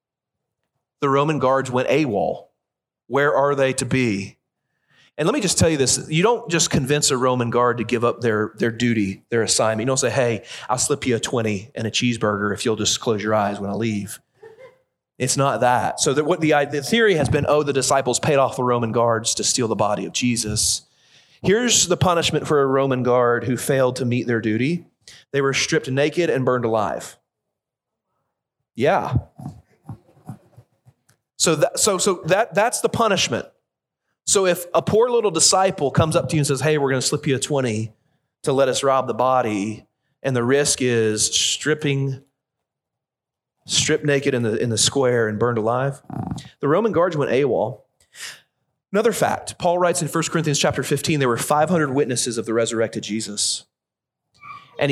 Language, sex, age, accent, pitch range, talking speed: English, male, 30-49, American, 115-150 Hz, 185 wpm